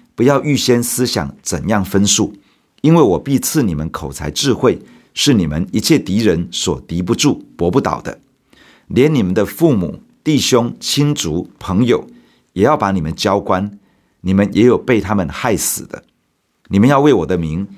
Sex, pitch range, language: male, 90-125 Hz, Chinese